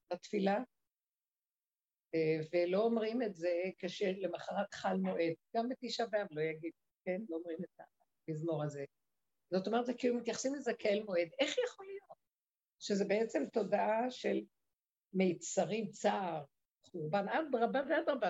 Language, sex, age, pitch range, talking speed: Hebrew, female, 50-69, 190-270 Hz, 130 wpm